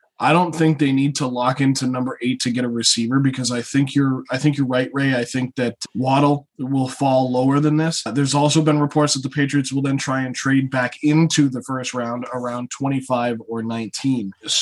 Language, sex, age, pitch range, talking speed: English, male, 20-39, 125-150 Hz, 220 wpm